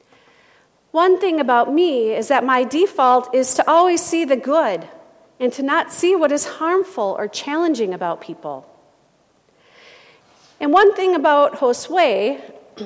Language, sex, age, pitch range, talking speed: English, female, 40-59, 240-345 Hz, 140 wpm